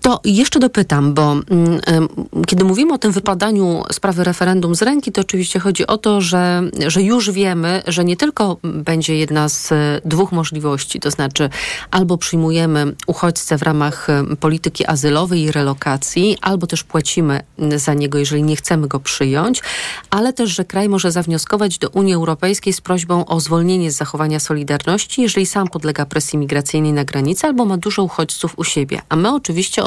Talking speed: 165 wpm